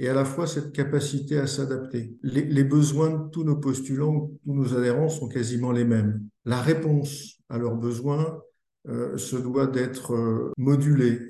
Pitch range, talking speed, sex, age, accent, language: 115-140 Hz, 175 wpm, male, 50-69, French, French